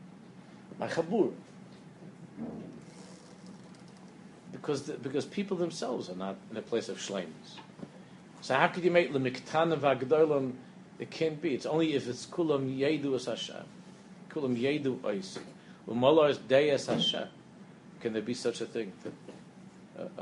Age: 50-69